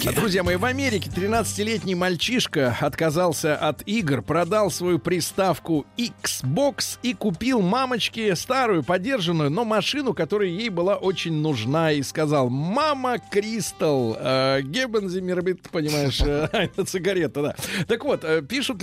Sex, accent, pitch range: male, native, 160-225 Hz